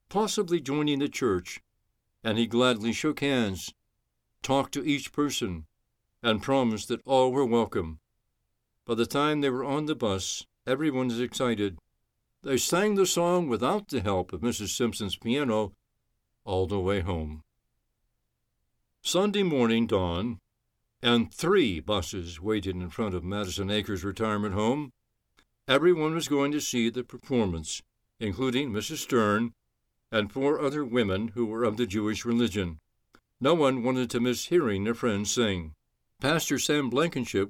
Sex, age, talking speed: male, 60-79, 145 wpm